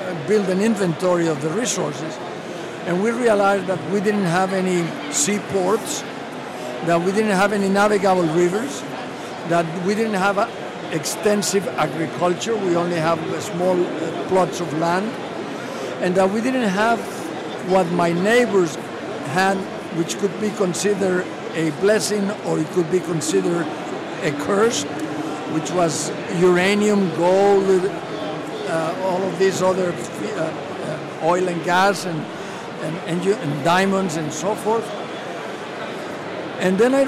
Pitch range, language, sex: 170-205 Hz, English, male